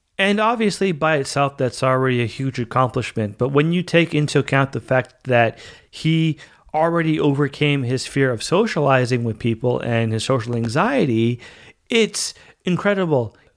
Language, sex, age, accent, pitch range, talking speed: English, male, 40-59, American, 120-155 Hz, 145 wpm